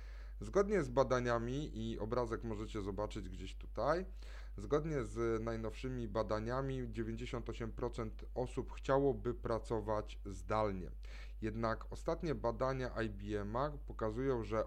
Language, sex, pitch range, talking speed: Polish, male, 105-125 Hz, 100 wpm